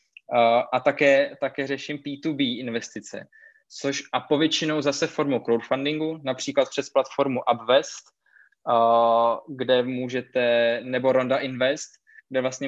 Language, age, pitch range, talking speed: Czech, 20-39, 125-145 Hz, 120 wpm